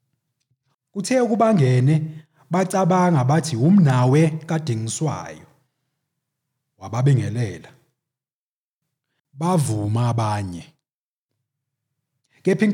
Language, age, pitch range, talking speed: English, 30-49, 130-160 Hz, 75 wpm